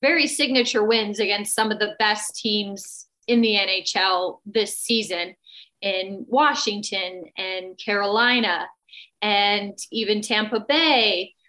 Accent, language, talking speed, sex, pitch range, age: American, English, 115 wpm, female, 210-255 Hz, 30-49